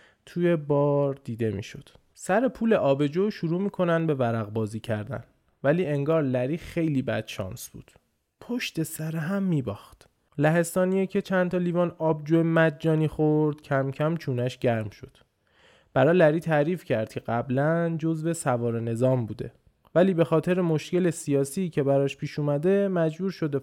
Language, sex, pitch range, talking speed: Persian, male, 130-175 Hz, 150 wpm